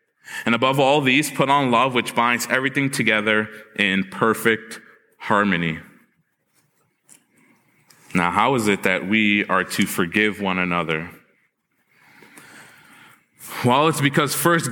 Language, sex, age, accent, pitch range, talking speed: English, male, 20-39, American, 115-175 Hz, 120 wpm